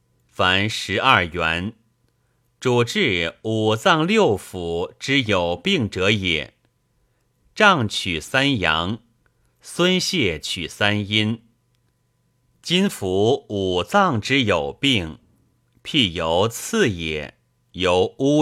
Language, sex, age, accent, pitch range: Chinese, male, 30-49, native, 90-135 Hz